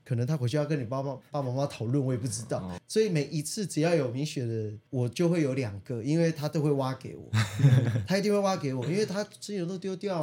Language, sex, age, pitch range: Chinese, male, 20-39, 120-155 Hz